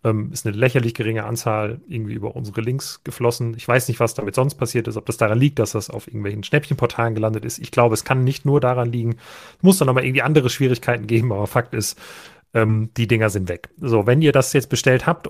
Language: German